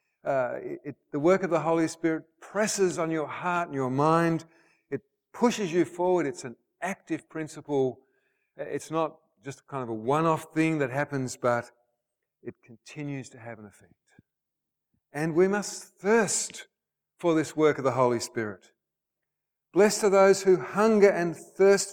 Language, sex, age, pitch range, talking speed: English, male, 50-69, 115-165 Hz, 160 wpm